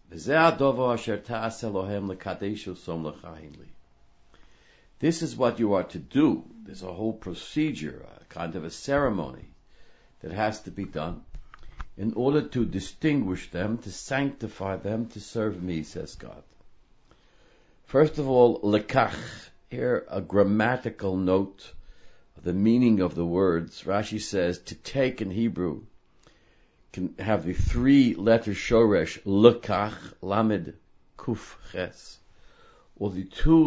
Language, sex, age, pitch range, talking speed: English, male, 60-79, 95-115 Hz, 120 wpm